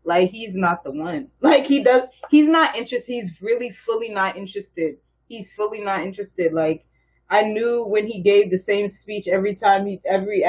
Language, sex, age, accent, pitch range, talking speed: English, female, 20-39, American, 195-260 Hz, 190 wpm